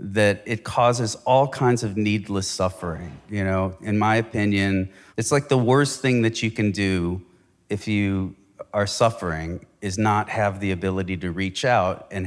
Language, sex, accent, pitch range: English, male, American, 95-115 Hz